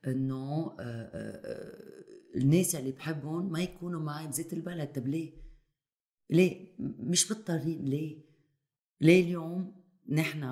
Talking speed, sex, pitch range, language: 105 wpm, female, 120-160 Hz, Arabic